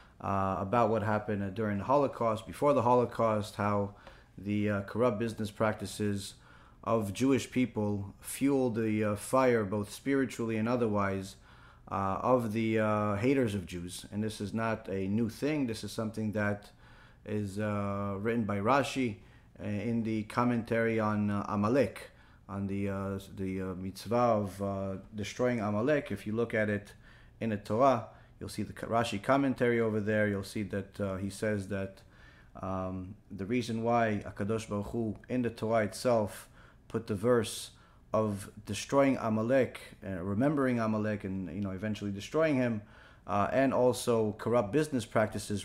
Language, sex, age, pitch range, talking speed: English, male, 30-49, 100-120 Hz, 160 wpm